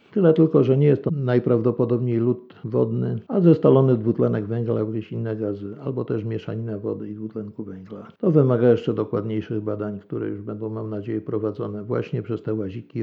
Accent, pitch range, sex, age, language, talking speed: native, 110-145 Hz, male, 50-69, Polish, 175 wpm